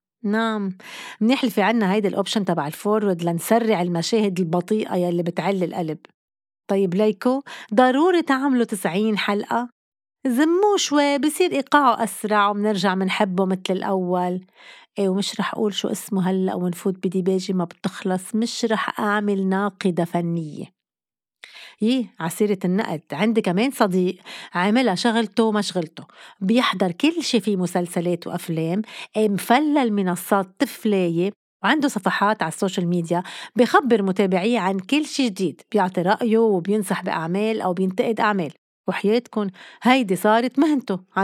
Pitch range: 185-235 Hz